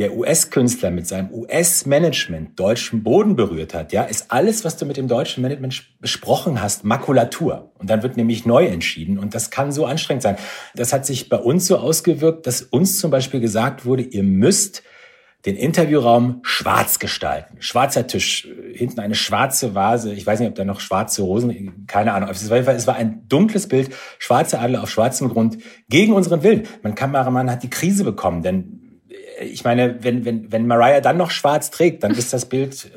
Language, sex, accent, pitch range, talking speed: German, male, German, 115-150 Hz, 185 wpm